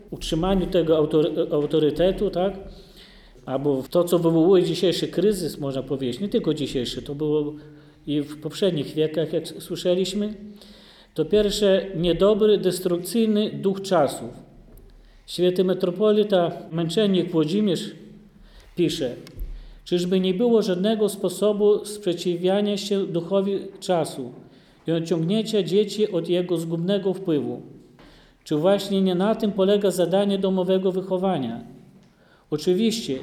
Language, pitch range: Polish, 165-200 Hz